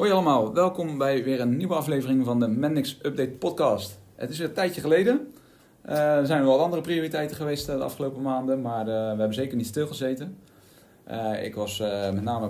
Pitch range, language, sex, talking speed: 105-135 Hz, Dutch, male, 195 wpm